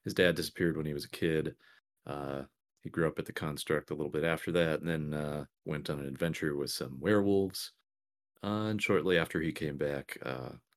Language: English